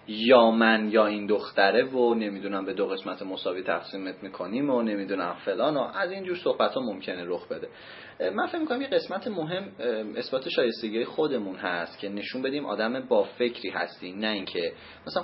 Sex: male